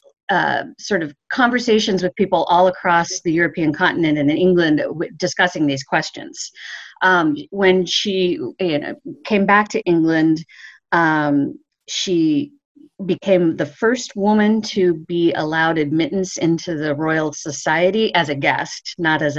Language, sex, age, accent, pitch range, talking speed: English, female, 40-59, American, 155-195 Hz, 135 wpm